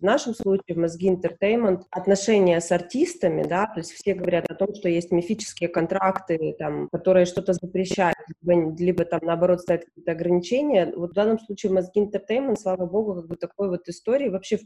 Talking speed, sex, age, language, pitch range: 185 wpm, female, 20-39, Russian, 165-190 Hz